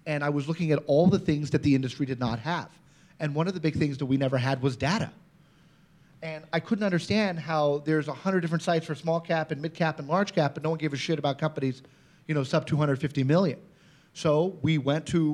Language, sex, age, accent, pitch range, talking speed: English, male, 30-49, American, 140-170 Hz, 240 wpm